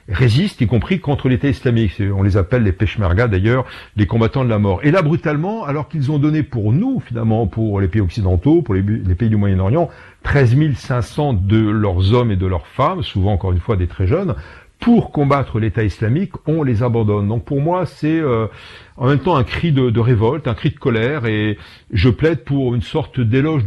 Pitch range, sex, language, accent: 105-145 Hz, male, French, French